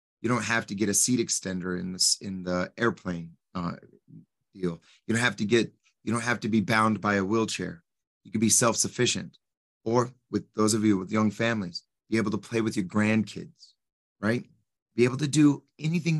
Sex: male